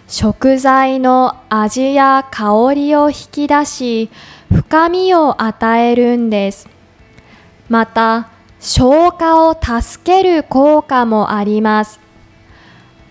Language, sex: Japanese, female